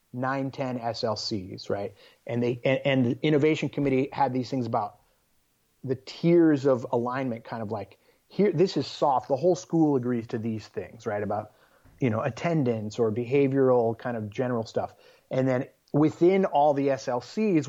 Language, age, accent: English, 30-49, American